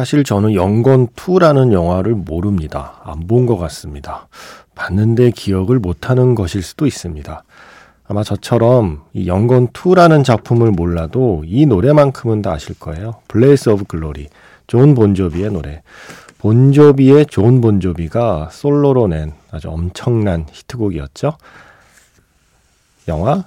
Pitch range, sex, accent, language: 90-130 Hz, male, native, Korean